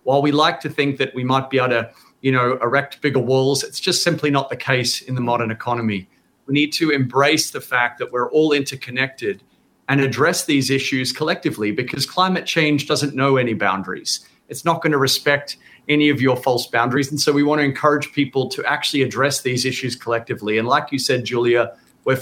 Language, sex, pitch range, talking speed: English, male, 125-145 Hz, 210 wpm